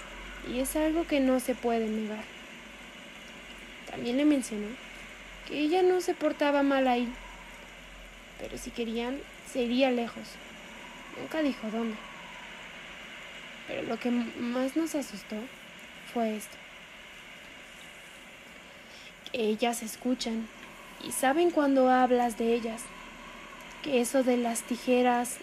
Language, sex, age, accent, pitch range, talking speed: Spanish, female, 20-39, Mexican, 235-290 Hz, 115 wpm